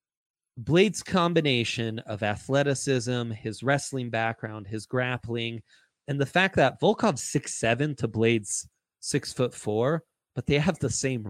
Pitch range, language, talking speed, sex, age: 115-140 Hz, English, 135 wpm, male, 20-39